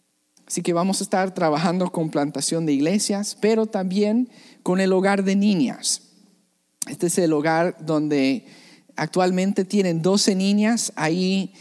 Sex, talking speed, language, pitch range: male, 140 wpm, English, 150-200 Hz